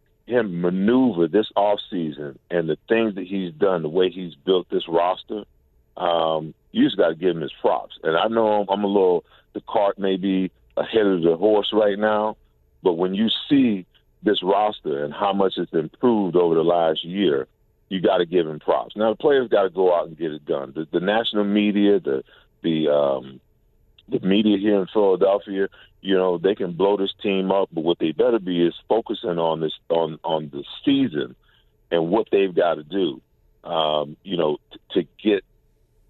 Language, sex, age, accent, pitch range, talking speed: English, male, 40-59, American, 85-105 Hz, 200 wpm